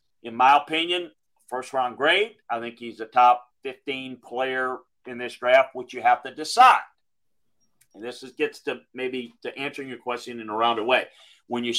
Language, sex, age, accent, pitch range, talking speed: English, male, 50-69, American, 130-210 Hz, 190 wpm